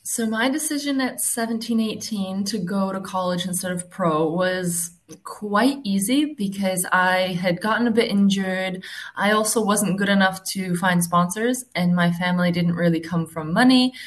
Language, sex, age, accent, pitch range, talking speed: English, female, 20-39, American, 160-200 Hz, 165 wpm